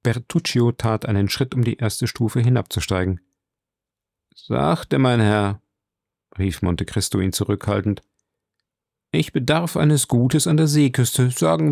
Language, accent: German, German